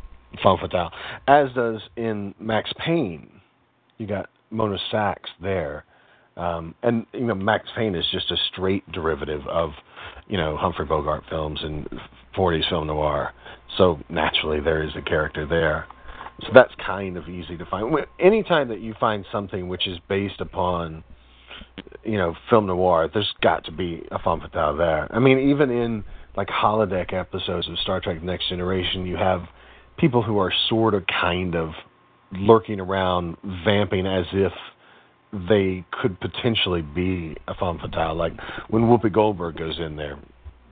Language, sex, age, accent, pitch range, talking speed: English, male, 40-59, American, 85-110 Hz, 160 wpm